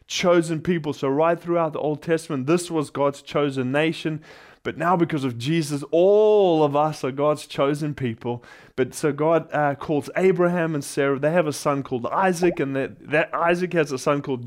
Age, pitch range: 20-39, 140-170 Hz